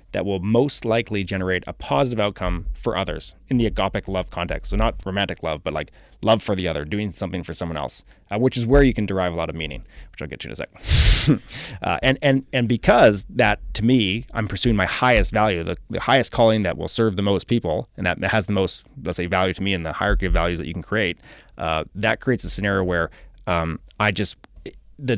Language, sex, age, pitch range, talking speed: English, male, 30-49, 90-115 Hz, 235 wpm